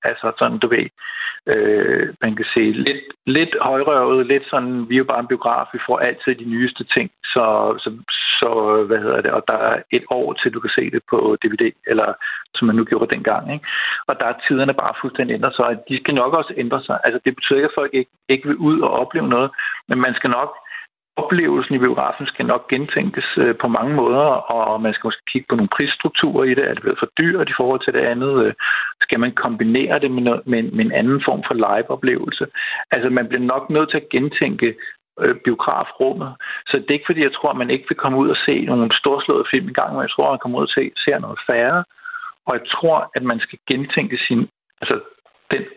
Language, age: Danish, 50-69